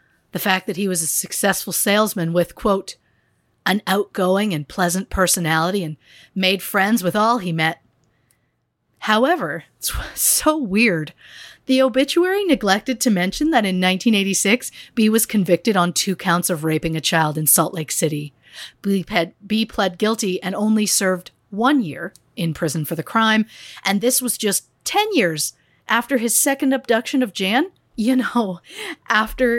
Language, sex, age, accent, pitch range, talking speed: English, female, 40-59, American, 170-230 Hz, 155 wpm